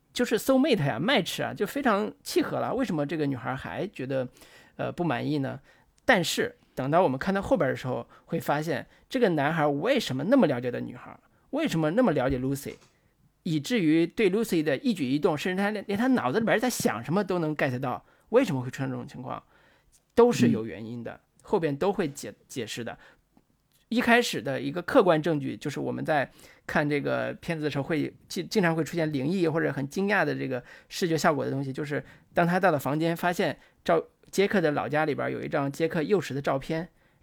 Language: Chinese